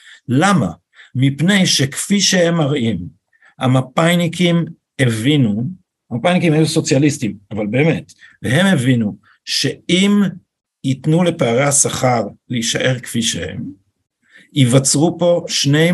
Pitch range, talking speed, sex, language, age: 125-165 Hz, 90 wpm, male, Hebrew, 50-69